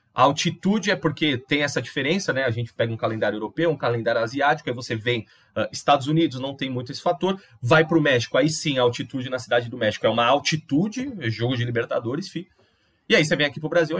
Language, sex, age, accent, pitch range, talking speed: Portuguese, male, 30-49, Brazilian, 125-165 Hz, 240 wpm